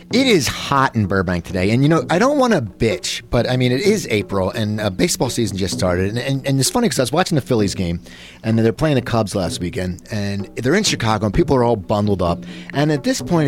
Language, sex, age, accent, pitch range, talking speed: English, male, 30-49, American, 100-145 Hz, 265 wpm